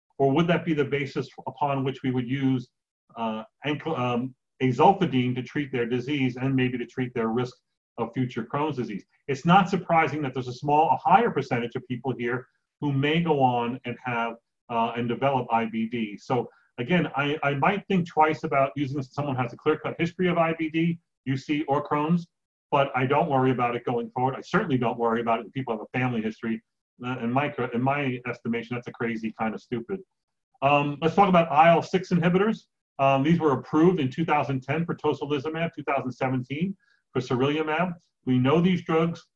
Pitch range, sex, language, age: 125-160 Hz, male, English, 40-59